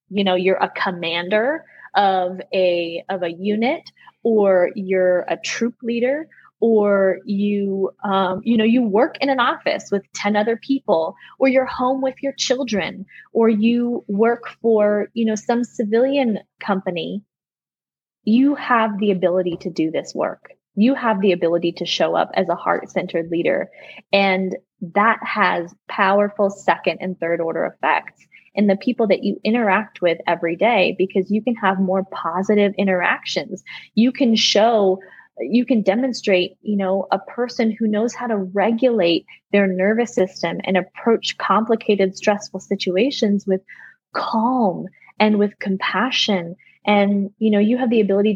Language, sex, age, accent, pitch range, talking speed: English, female, 20-39, American, 190-230 Hz, 155 wpm